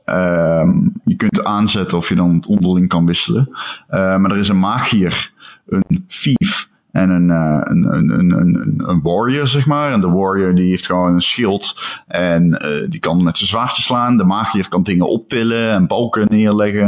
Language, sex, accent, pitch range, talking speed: Dutch, male, Dutch, 95-125 Hz, 185 wpm